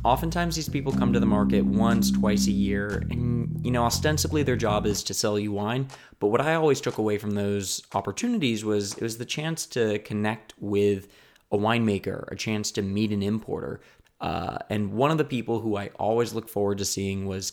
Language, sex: English, male